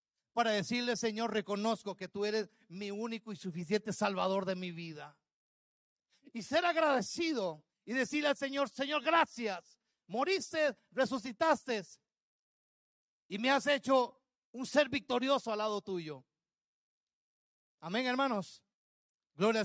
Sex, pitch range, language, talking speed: male, 195-255 Hz, Spanish, 120 wpm